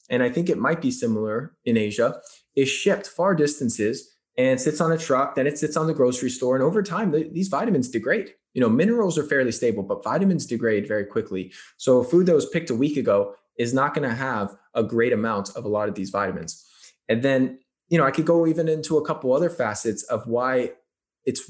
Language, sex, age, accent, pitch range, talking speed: English, male, 20-39, American, 115-150 Hz, 225 wpm